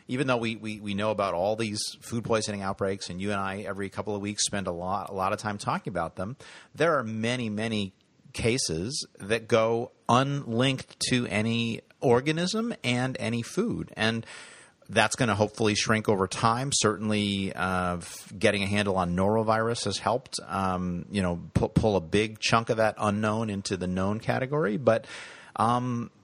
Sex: male